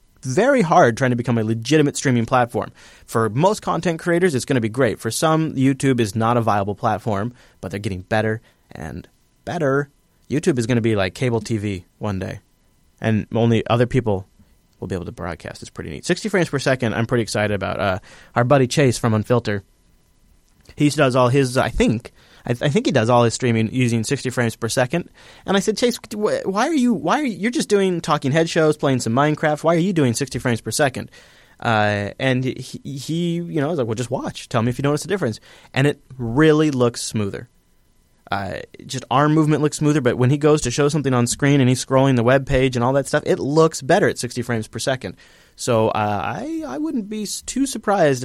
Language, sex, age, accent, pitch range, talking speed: English, male, 30-49, American, 115-150 Hz, 225 wpm